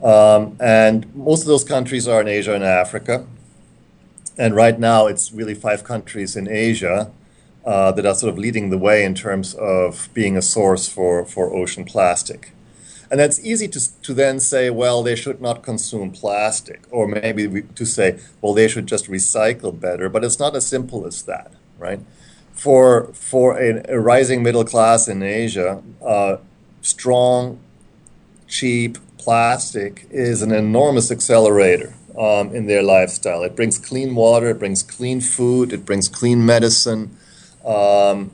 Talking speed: 165 wpm